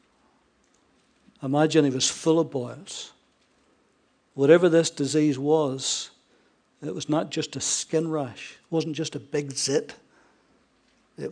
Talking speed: 125 wpm